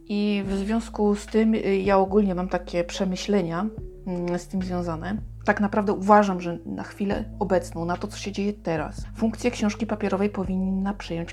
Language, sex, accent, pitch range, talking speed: Polish, female, native, 175-205 Hz, 165 wpm